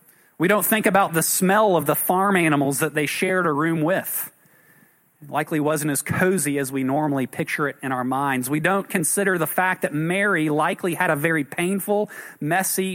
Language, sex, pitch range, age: English, male, 145-185 Hz, 40-59